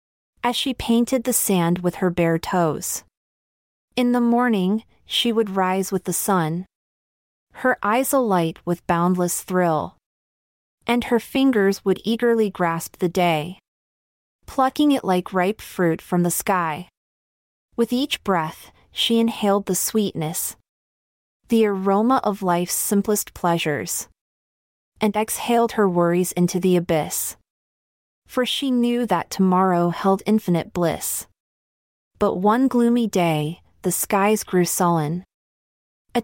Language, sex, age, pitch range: English, female, 30-49, 170-230 Hz